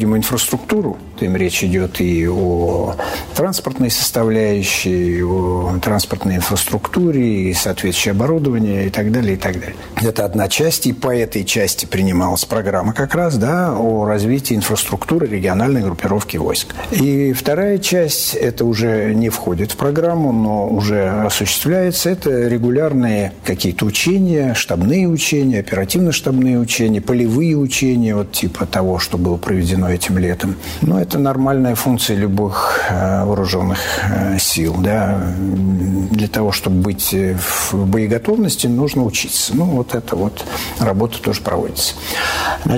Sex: male